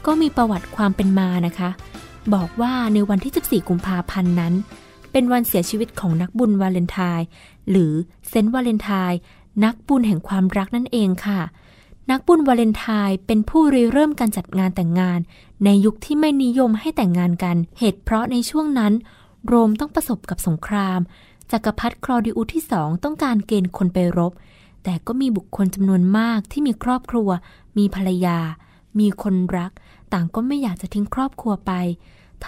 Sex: female